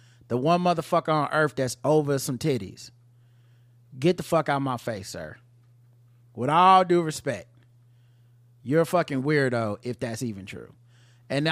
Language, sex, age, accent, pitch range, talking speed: English, male, 30-49, American, 120-160 Hz, 150 wpm